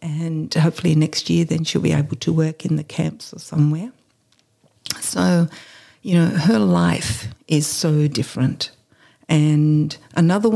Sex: female